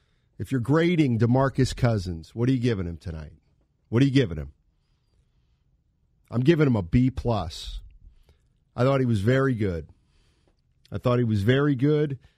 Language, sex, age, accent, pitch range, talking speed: English, male, 50-69, American, 110-150 Hz, 165 wpm